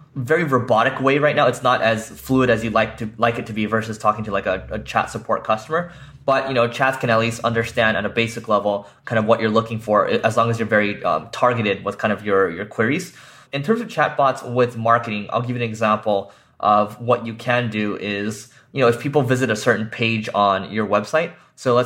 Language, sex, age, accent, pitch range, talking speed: English, male, 20-39, American, 110-125 Hz, 255 wpm